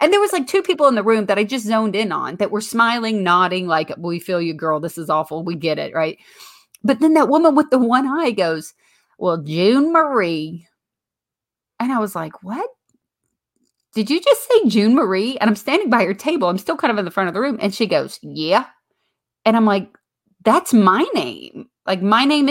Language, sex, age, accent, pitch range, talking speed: English, female, 30-49, American, 190-315 Hz, 220 wpm